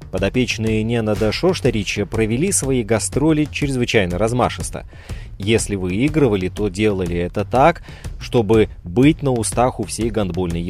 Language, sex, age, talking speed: Russian, male, 30-49, 120 wpm